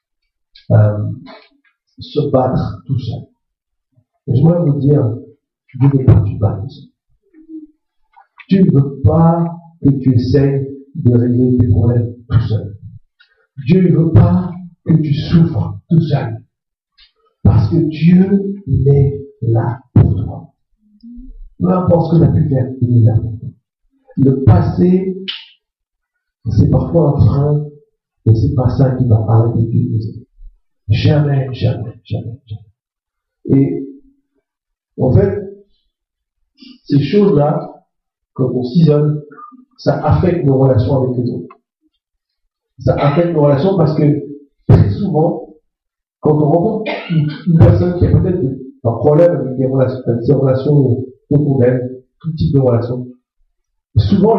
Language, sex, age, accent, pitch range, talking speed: French, male, 60-79, French, 125-170 Hz, 140 wpm